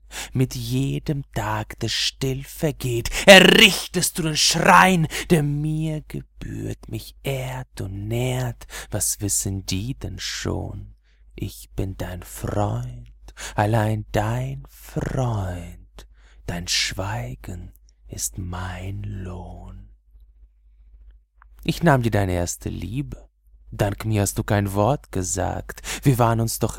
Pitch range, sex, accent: 100-150 Hz, male, German